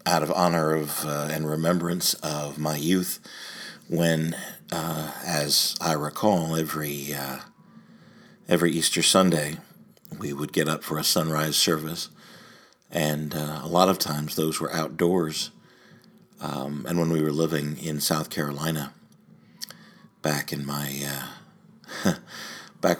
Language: English